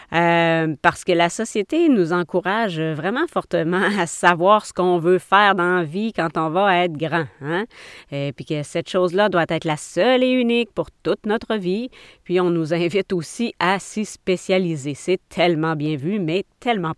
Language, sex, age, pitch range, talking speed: French, female, 30-49, 160-200 Hz, 185 wpm